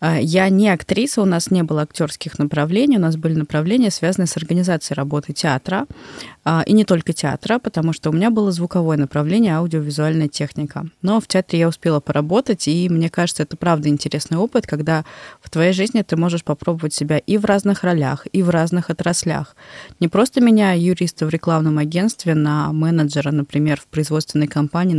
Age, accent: 20-39, native